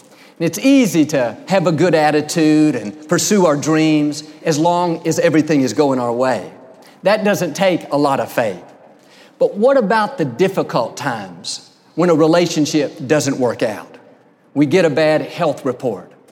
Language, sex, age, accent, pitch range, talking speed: English, male, 50-69, American, 145-200 Hz, 160 wpm